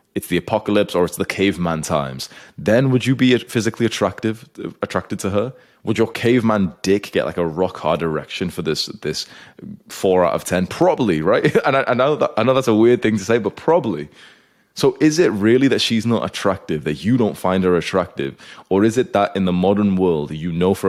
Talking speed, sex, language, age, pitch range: 220 wpm, male, English, 20-39, 80-105 Hz